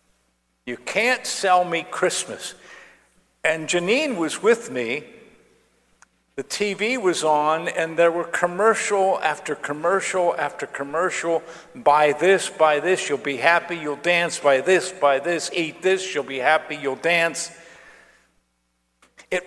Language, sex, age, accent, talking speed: English, male, 50-69, American, 135 wpm